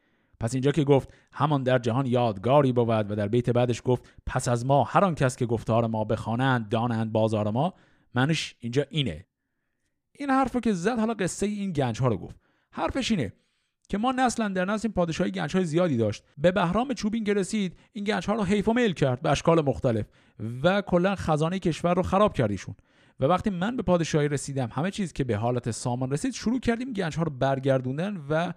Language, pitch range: Persian, 120-185 Hz